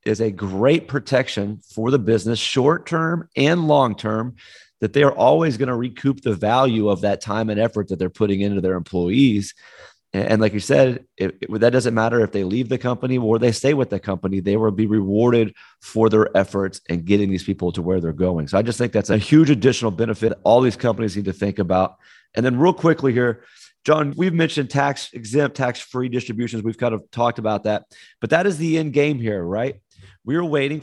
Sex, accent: male, American